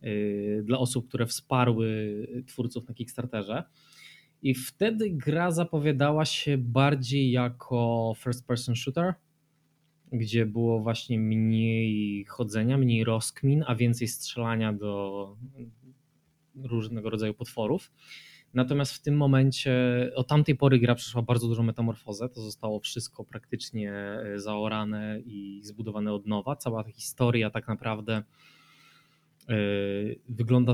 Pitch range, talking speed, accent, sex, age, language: 110-145 Hz, 110 wpm, native, male, 20-39, Polish